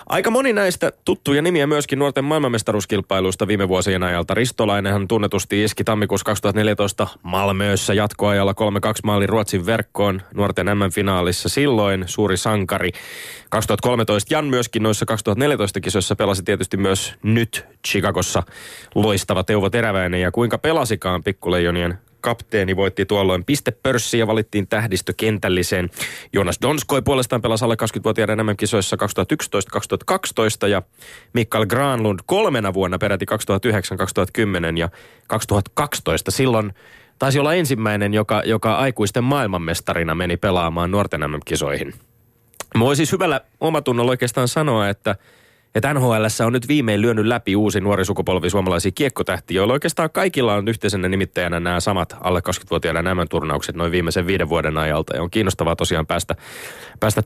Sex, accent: male, native